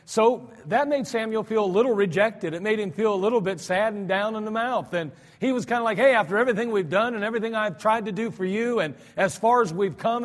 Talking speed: 270 wpm